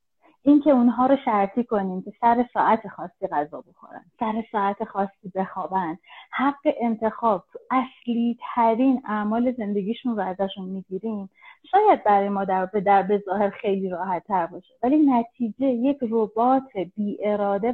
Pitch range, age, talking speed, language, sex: 200-260 Hz, 30-49, 145 wpm, Persian, female